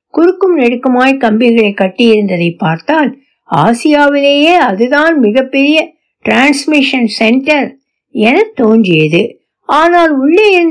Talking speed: 65 wpm